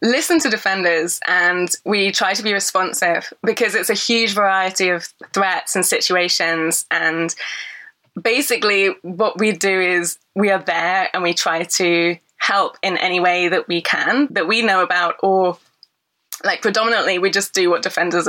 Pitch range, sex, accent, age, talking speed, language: 175-205 Hz, female, British, 20-39, 165 wpm, English